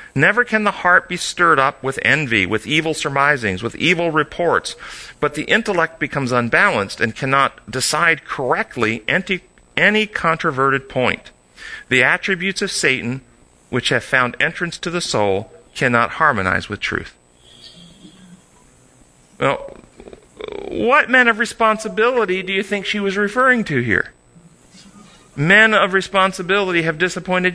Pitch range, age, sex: 135-200 Hz, 40-59, male